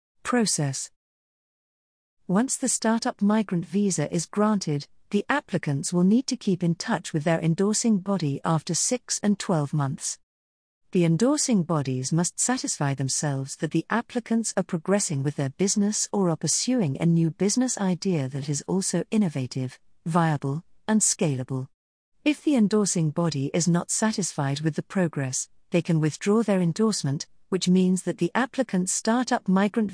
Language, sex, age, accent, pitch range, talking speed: English, female, 50-69, British, 155-215 Hz, 150 wpm